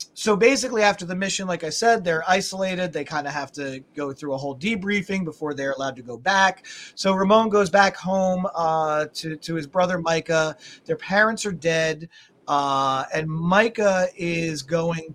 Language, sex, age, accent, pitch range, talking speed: English, male, 30-49, American, 150-195 Hz, 180 wpm